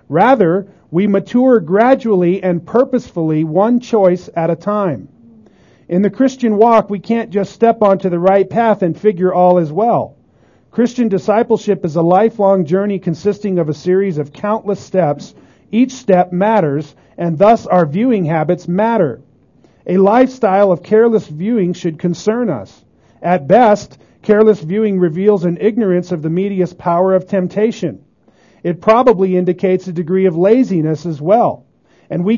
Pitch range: 170-215 Hz